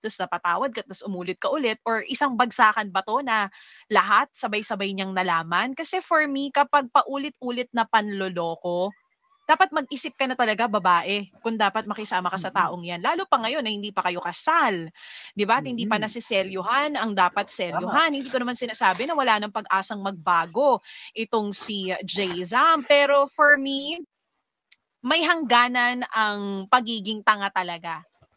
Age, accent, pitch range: 20-39, native, 195-270 Hz